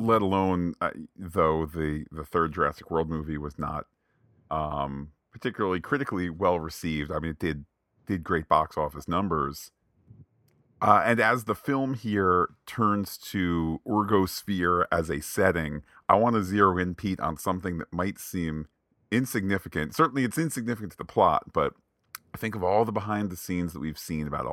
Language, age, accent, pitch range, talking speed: English, 40-59, American, 80-105 Hz, 160 wpm